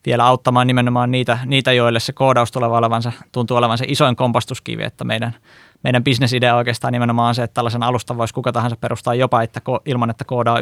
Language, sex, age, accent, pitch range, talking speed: Finnish, male, 20-39, native, 115-130 Hz, 200 wpm